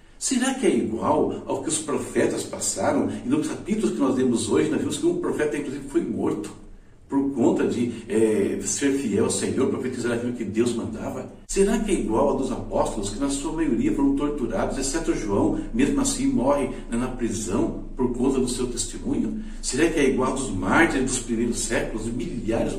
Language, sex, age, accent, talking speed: Portuguese, male, 60-79, Brazilian, 190 wpm